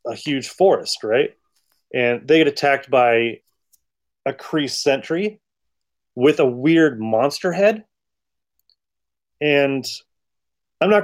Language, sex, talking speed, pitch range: English, male, 110 wpm, 120-185 Hz